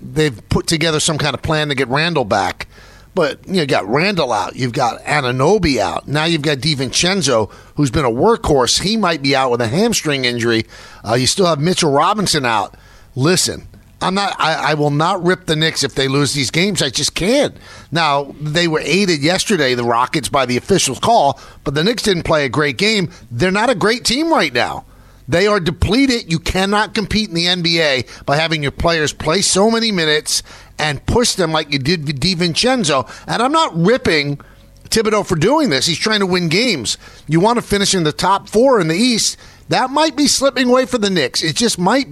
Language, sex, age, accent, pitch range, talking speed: English, male, 50-69, American, 145-195 Hz, 210 wpm